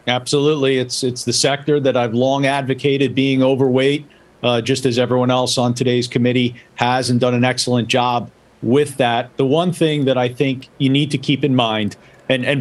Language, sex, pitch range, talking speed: English, male, 130-150 Hz, 195 wpm